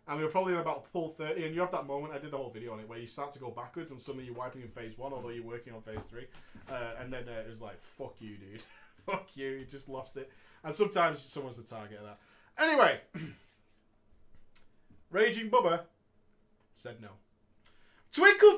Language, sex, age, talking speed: English, male, 30-49, 220 wpm